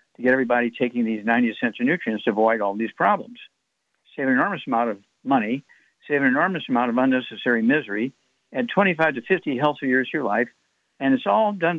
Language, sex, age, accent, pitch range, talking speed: English, male, 60-79, American, 120-170 Hz, 205 wpm